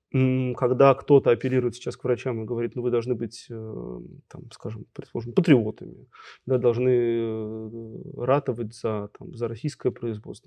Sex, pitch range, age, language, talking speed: male, 115-145 Hz, 30-49, Russian, 140 wpm